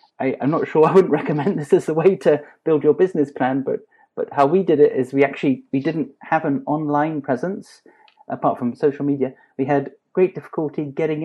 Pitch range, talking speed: 140-170 Hz, 210 wpm